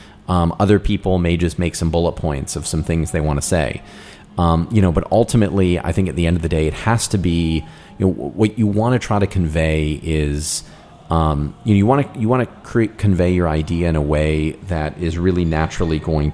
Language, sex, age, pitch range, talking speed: English, male, 30-49, 80-95 Hz, 235 wpm